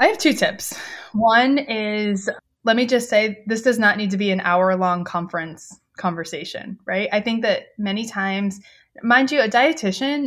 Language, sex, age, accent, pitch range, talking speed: English, female, 20-39, American, 185-235 Hz, 180 wpm